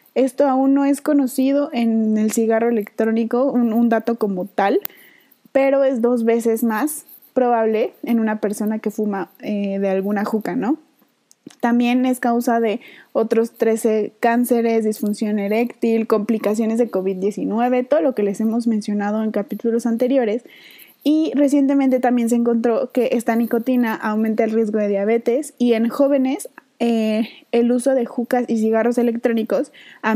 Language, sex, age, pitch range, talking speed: Spanish, female, 20-39, 220-255 Hz, 150 wpm